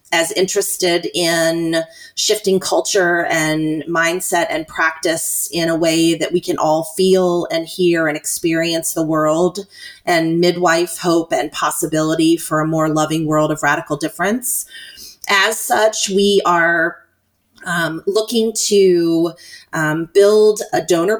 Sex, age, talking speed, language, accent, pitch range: female, 30-49, 135 wpm, English, American, 165-195 Hz